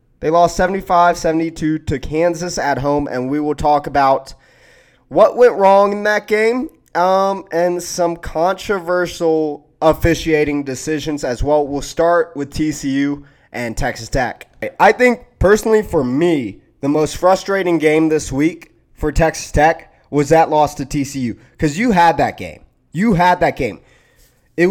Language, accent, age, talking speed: English, American, 20-39, 150 wpm